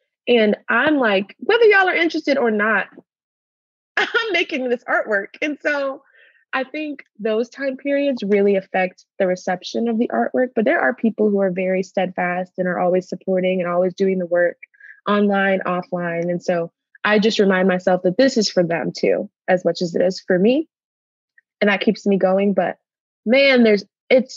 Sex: female